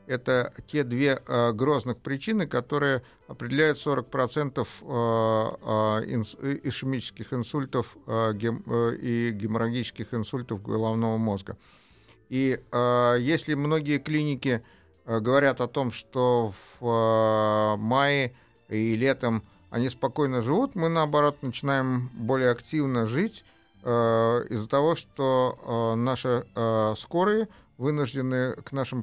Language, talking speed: Russian, 90 wpm